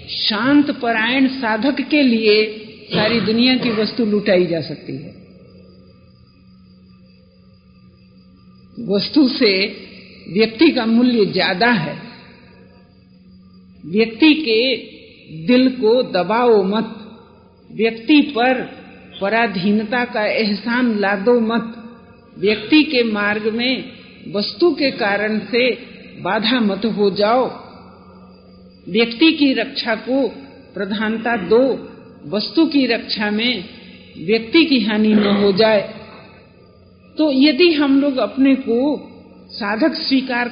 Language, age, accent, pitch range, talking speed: Hindi, 50-69, native, 205-270 Hz, 100 wpm